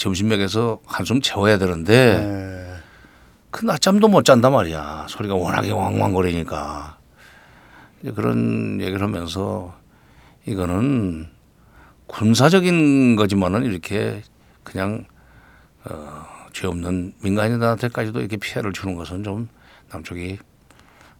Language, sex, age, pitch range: Korean, male, 60-79, 90-120 Hz